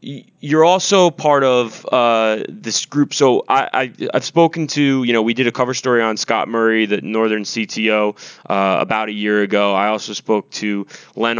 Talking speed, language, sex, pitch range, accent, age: 190 wpm, English, male, 105-125 Hz, American, 20-39